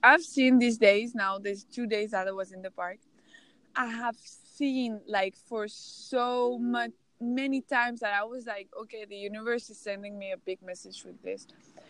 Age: 20-39